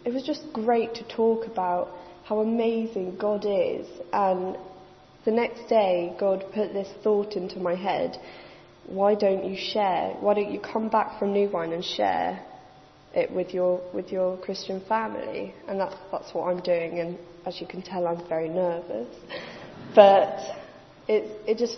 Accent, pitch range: British, 185-215 Hz